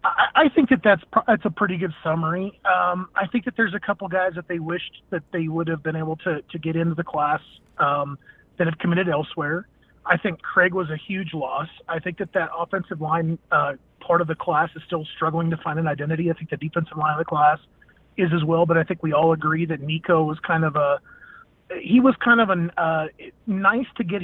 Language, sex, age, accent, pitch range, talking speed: English, male, 30-49, American, 160-185 Hz, 230 wpm